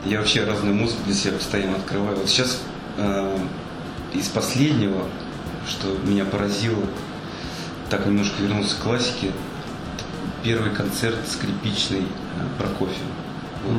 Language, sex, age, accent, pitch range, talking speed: Russian, male, 30-49, native, 95-105 Hz, 125 wpm